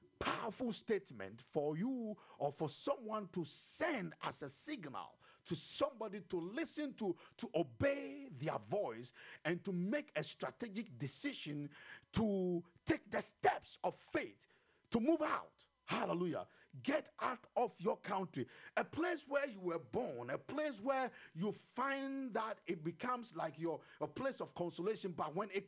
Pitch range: 180-270 Hz